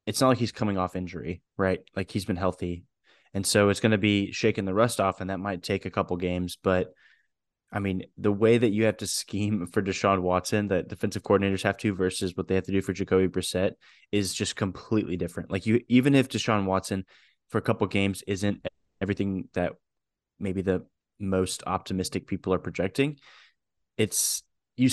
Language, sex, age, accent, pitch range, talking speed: English, male, 20-39, American, 95-105 Hz, 195 wpm